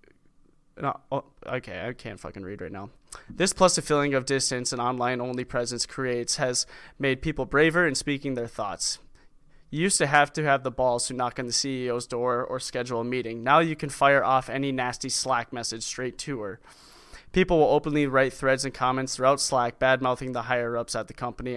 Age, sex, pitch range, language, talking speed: 20-39, male, 120-140 Hz, English, 195 wpm